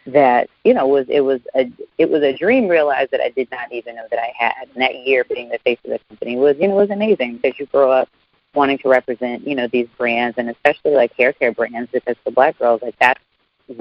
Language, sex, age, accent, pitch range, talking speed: English, female, 30-49, American, 120-135 Hz, 255 wpm